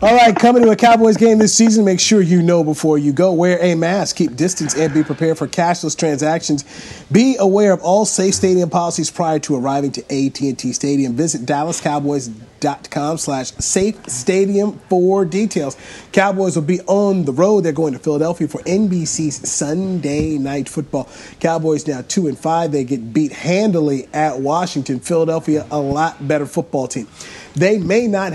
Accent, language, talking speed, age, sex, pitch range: American, English, 170 wpm, 30-49, male, 145-190 Hz